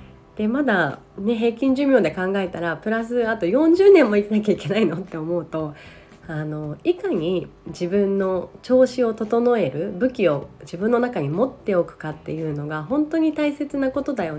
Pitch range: 160-245 Hz